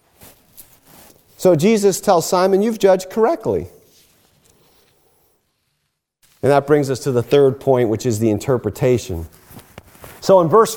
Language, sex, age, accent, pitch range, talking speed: English, male, 40-59, American, 130-215 Hz, 125 wpm